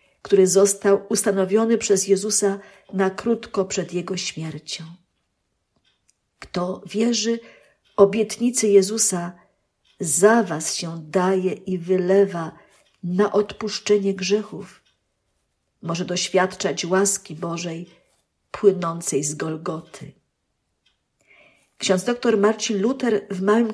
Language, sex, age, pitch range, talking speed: Polish, female, 50-69, 185-220 Hz, 90 wpm